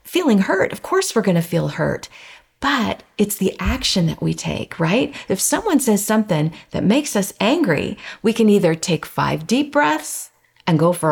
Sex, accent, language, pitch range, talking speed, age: female, American, English, 160-225 Hz, 185 wpm, 50-69